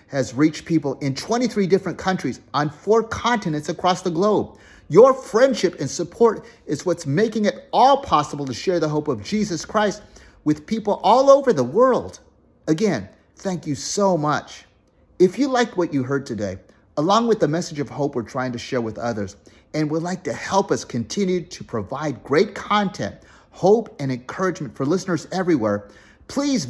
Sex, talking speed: male, 175 wpm